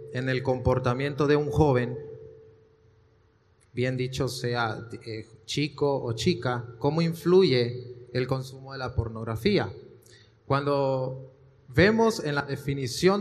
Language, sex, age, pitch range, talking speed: Spanish, male, 30-49, 125-150 Hz, 115 wpm